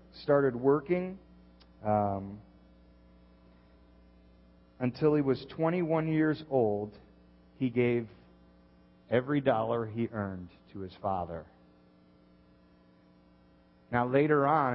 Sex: male